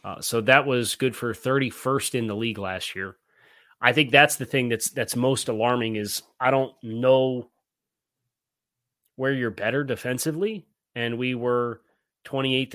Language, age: English, 30-49